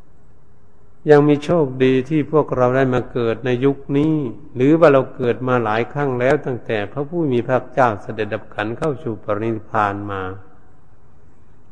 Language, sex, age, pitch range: Thai, male, 60-79, 105-135 Hz